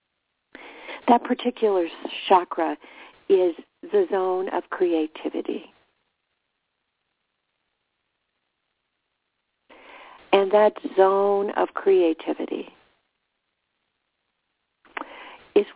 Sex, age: female, 50-69